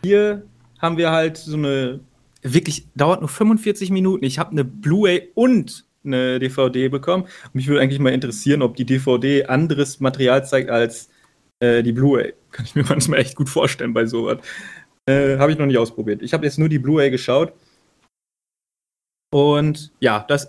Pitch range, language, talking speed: 130-160 Hz, German, 175 wpm